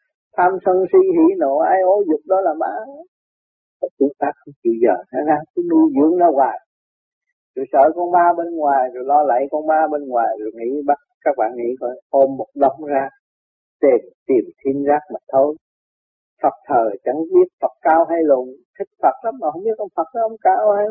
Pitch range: 130-185 Hz